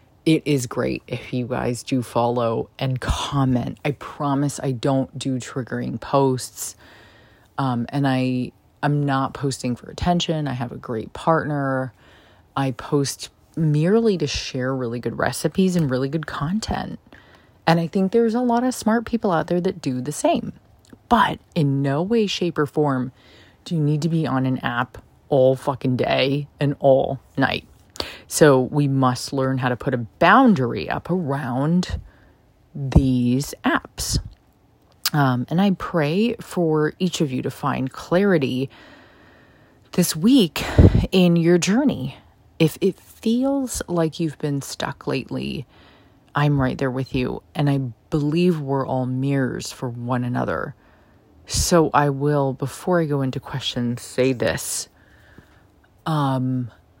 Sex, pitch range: female, 125-160 Hz